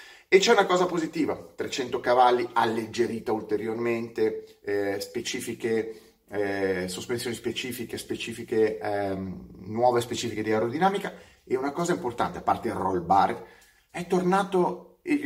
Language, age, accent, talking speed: Italian, 30-49, native, 125 wpm